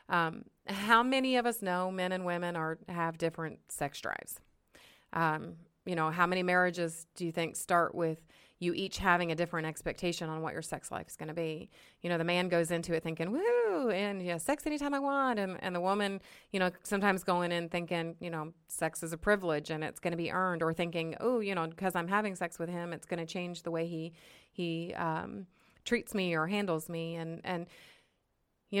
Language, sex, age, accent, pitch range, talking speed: English, female, 30-49, American, 165-185 Hz, 225 wpm